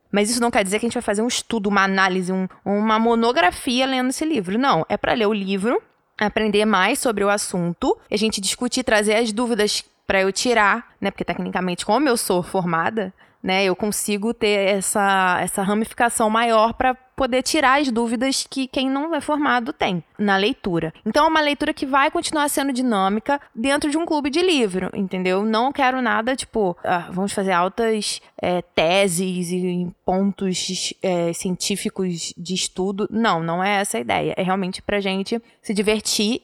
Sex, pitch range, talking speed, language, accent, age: female, 190-255 Hz, 185 wpm, Portuguese, Brazilian, 20-39